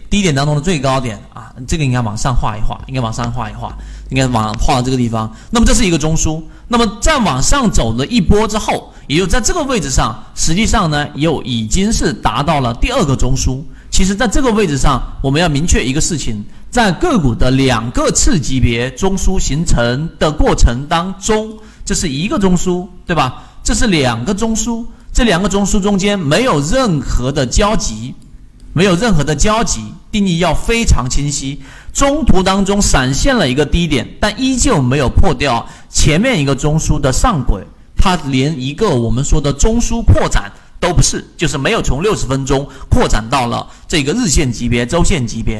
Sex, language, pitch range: male, Chinese, 125-195 Hz